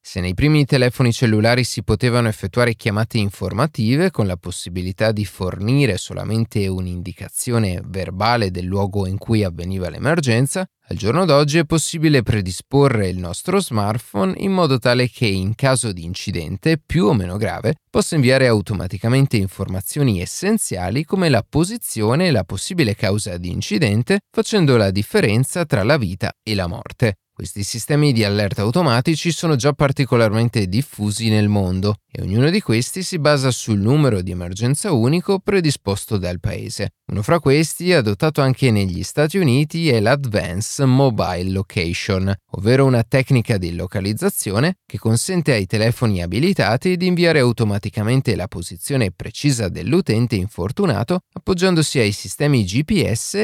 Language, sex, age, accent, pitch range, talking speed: Italian, male, 30-49, native, 100-140 Hz, 145 wpm